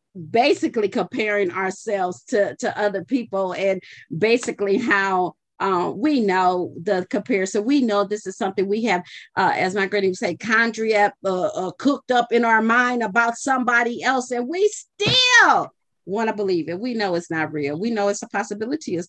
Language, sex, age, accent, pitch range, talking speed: English, female, 40-59, American, 170-230 Hz, 180 wpm